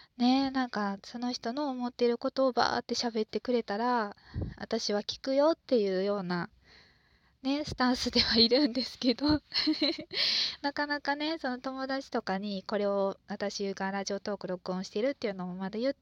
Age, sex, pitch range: 20-39, female, 195-255 Hz